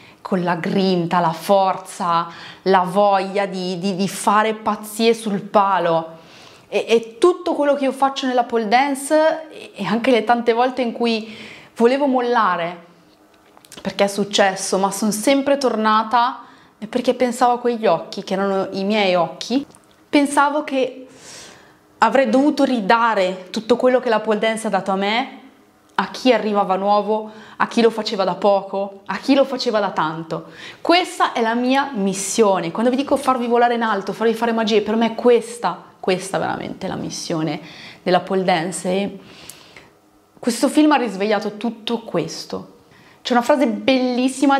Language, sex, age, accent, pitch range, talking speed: Italian, female, 20-39, native, 195-245 Hz, 160 wpm